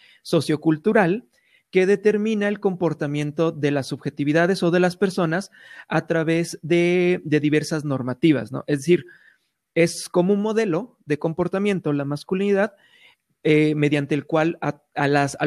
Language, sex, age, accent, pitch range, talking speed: Spanish, male, 30-49, Mexican, 145-195 Hz, 140 wpm